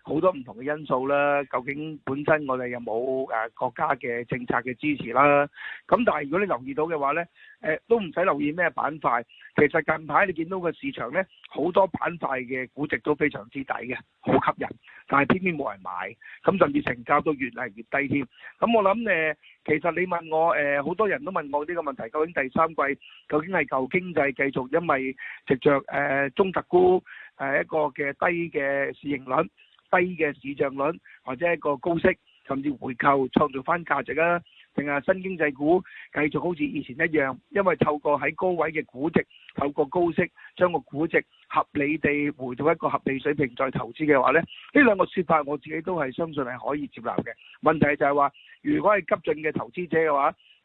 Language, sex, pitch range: Chinese, male, 140-170 Hz